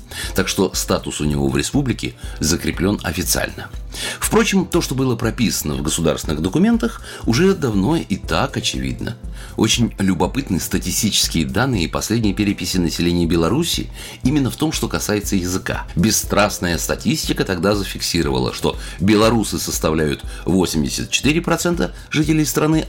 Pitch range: 80-115 Hz